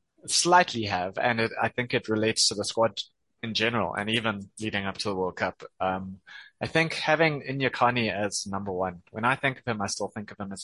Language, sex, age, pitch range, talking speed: English, male, 20-39, 95-120 Hz, 225 wpm